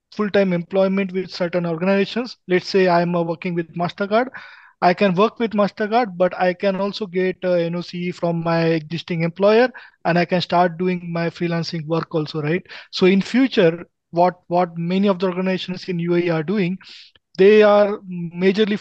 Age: 20-39